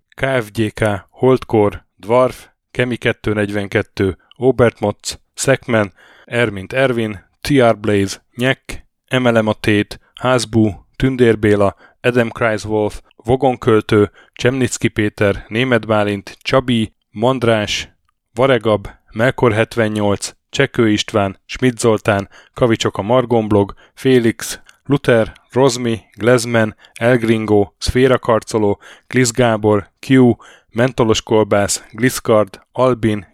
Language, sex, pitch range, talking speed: Hungarian, male, 105-125 Hz, 85 wpm